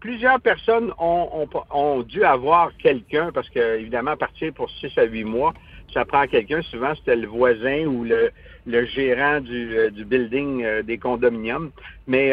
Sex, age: male, 60-79